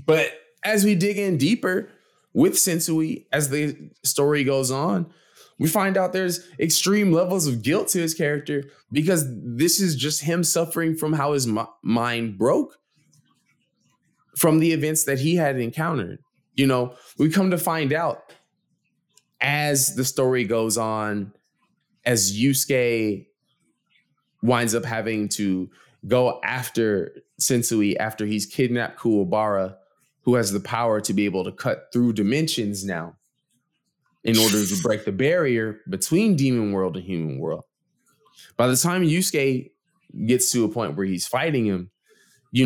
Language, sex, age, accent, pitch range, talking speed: English, male, 20-39, American, 110-155 Hz, 145 wpm